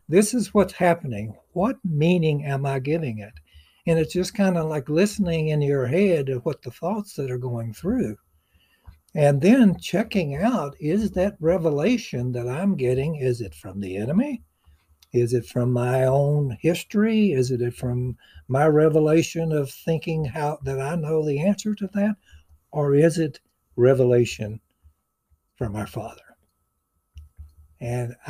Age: 60-79